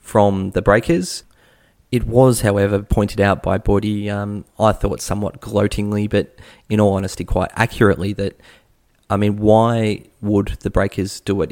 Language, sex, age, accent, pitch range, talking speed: English, male, 20-39, Australian, 95-105 Hz, 155 wpm